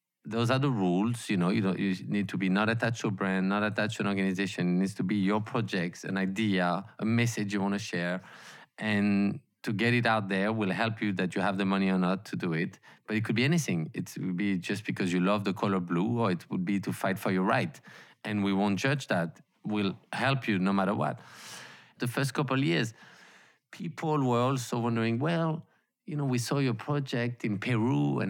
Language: English